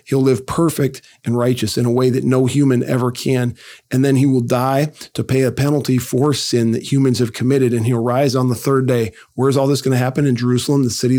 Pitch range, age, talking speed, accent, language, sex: 125-145 Hz, 40-59, 240 wpm, American, English, male